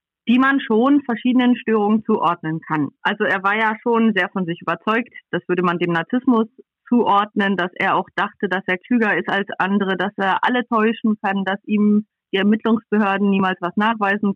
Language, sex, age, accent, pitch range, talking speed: German, female, 30-49, German, 195-235 Hz, 185 wpm